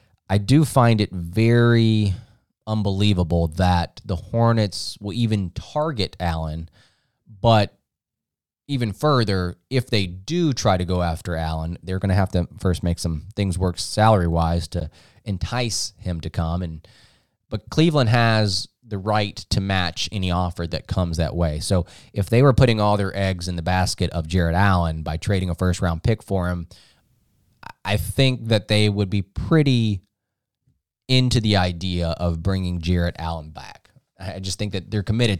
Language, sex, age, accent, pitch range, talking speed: English, male, 20-39, American, 90-110 Hz, 165 wpm